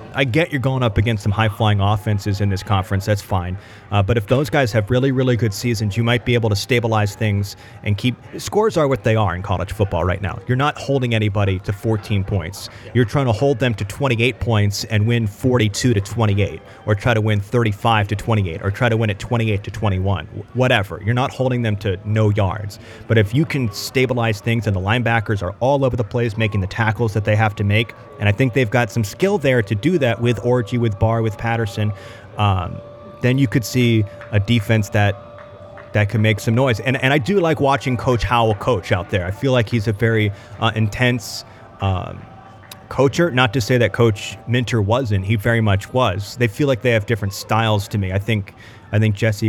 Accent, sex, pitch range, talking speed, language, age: American, male, 105-120 Hz, 225 wpm, English, 30-49